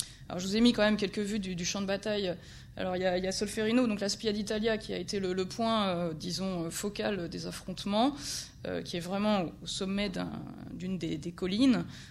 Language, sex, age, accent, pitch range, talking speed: French, female, 20-39, French, 180-220 Hz, 245 wpm